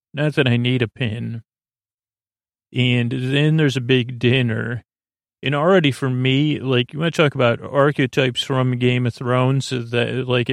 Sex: male